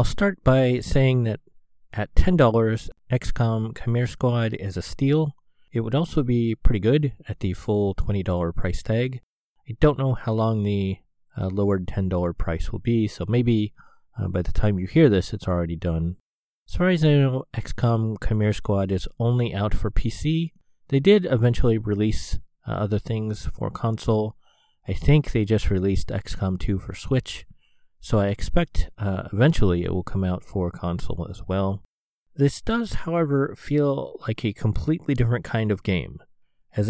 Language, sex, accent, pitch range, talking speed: English, male, American, 100-125 Hz, 170 wpm